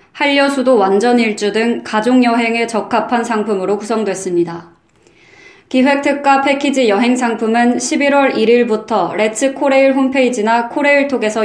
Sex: female